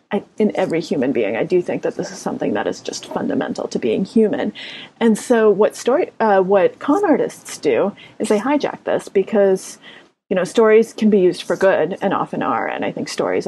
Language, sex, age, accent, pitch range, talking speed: English, female, 30-49, American, 190-240 Hz, 215 wpm